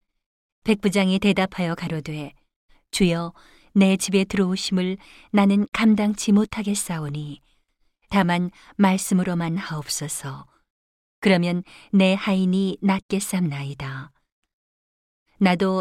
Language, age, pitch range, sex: Korean, 40-59, 160-200 Hz, female